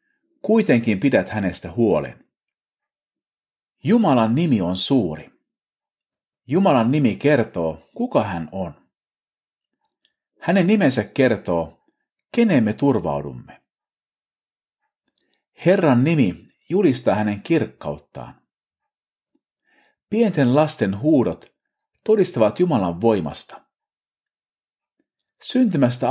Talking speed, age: 70 wpm, 50-69